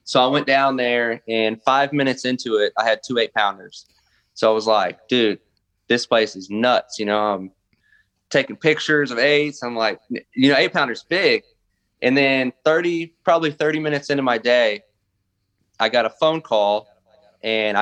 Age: 20-39